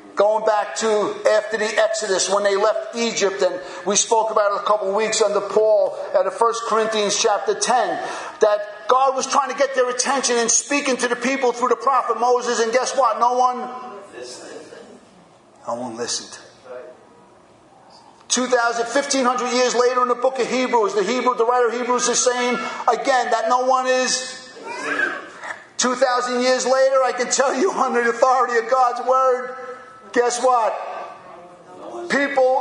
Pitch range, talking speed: 215-260 Hz, 165 wpm